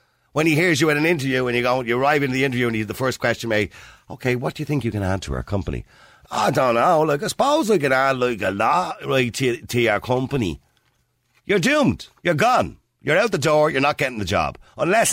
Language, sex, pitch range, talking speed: English, male, 95-145 Hz, 250 wpm